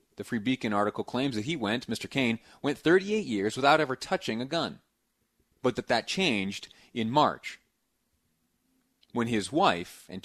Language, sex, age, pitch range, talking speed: English, male, 30-49, 115-155 Hz, 165 wpm